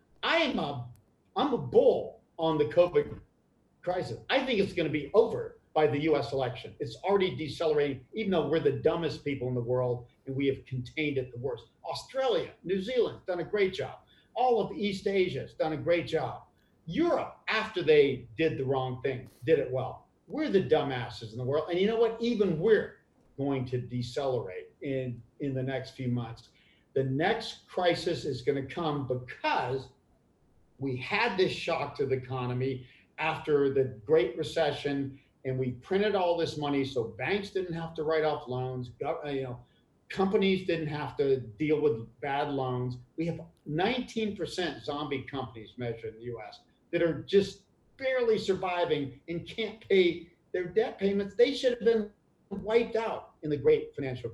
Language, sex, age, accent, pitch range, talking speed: English, male, 50-69, American, 130-190 Hz, 170 wpm